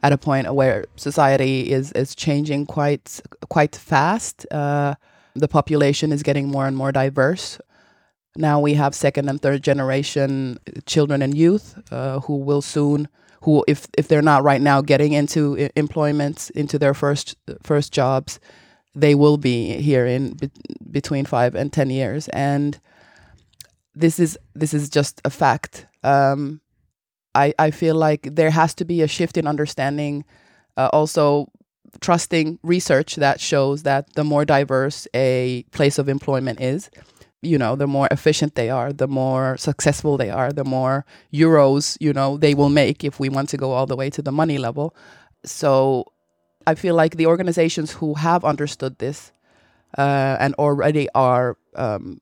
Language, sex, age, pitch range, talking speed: Finnish, female, 20-39, 135-150 Hz, 165 wpm